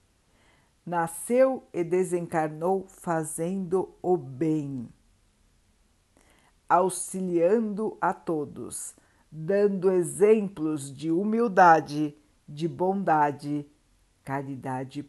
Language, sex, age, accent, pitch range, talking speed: Portuguese, female, 60-79, Brazilian, 140-185 Hz, 65 wpm